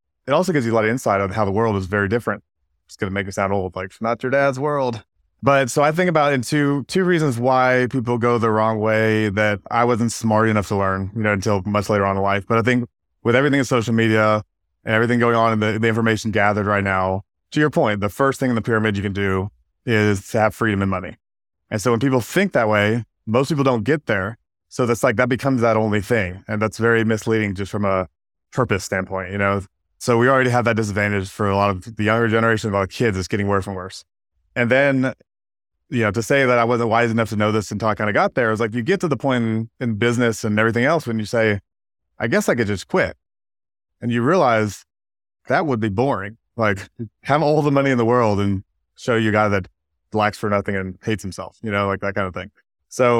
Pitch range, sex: 100-120 Hz, male